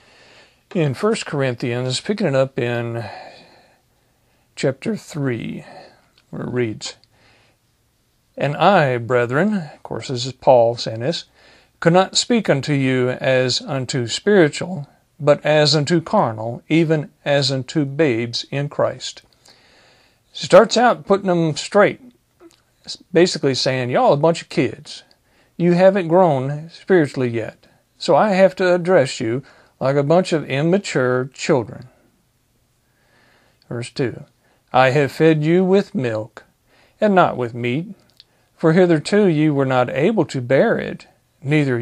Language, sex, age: English, male, 50-69